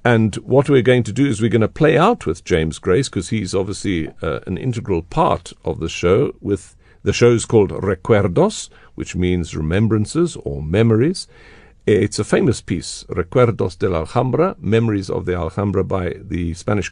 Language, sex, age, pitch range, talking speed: English, male, 50-69, 85-120 Hz, 175 wpm